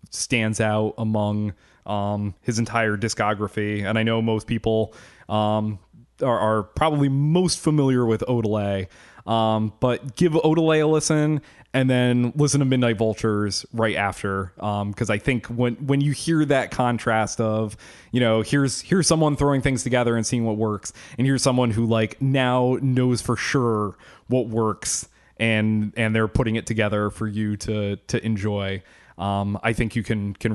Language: English